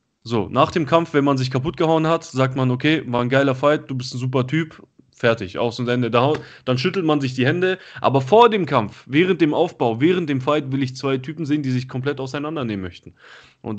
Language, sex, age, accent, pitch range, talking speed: German, male, 20-39, German, 125-165 Hz, 230 wpm